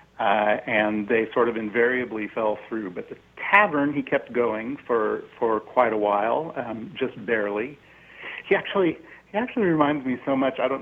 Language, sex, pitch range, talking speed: English, male, 110-130 Hz, 175 wpm